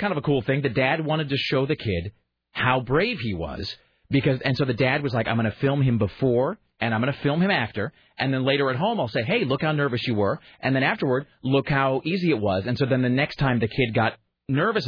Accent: American